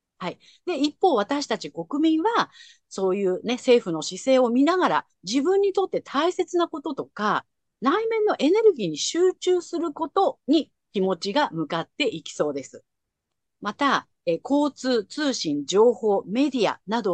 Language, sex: Japanese, female